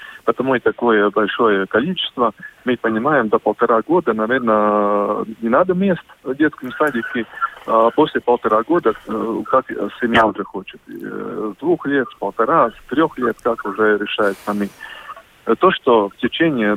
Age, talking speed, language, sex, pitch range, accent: 20-39, 135 wpm, Russian, male, 105-145 Hz, native